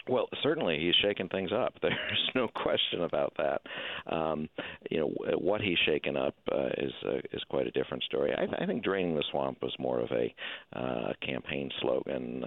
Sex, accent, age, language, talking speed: male, American, 50-69, English, 190 wpm